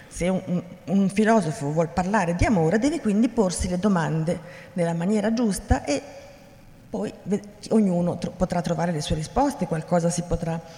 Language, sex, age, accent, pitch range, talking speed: Italian, female, 40-59, native, 165-220 Hz, 155 wpm